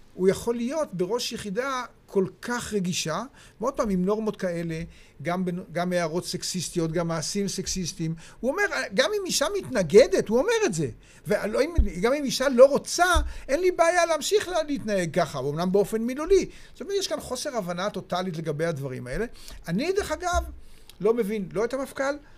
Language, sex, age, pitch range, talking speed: Hebrew, male, 50-69, 170-255 Hz, 170 wpm